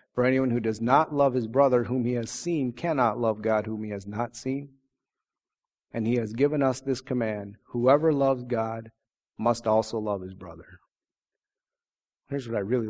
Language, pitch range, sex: English, 115-155 Hz, male